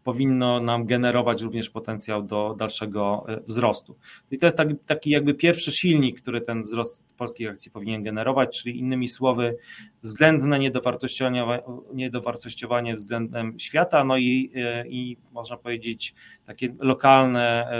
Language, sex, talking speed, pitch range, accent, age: Polish, male, 120 wpm, 115-135 Hz, native, 30-49